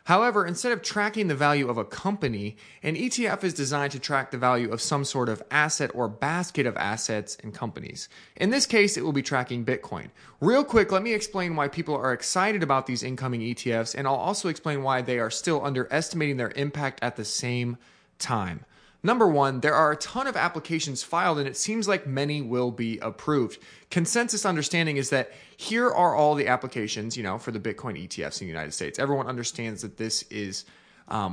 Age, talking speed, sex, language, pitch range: 30-49, 205 wpm, male, English, 125-160 Hz